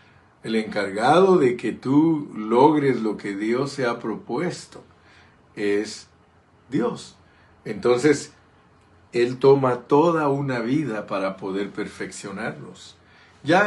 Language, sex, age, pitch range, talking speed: Spanish, male, 50-69, 95-120 Hz, 105 wpm